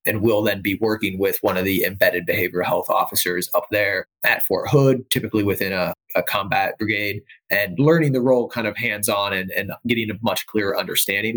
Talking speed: 200 wpm